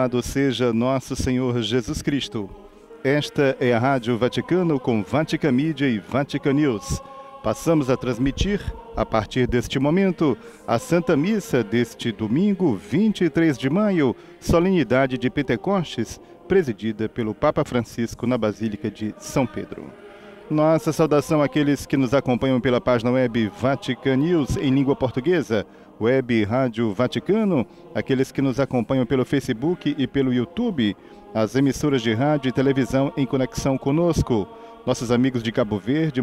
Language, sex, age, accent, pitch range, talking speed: Portuguese, male, 40-59, Brazilian, 115-150 Hz, 135 wpm